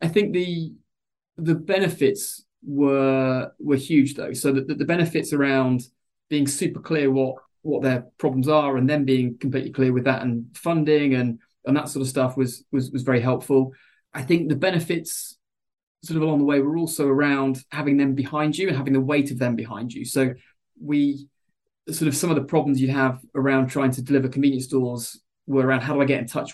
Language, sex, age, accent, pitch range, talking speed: English, male, 20-39, British, 130-150 Hz, 205 wpm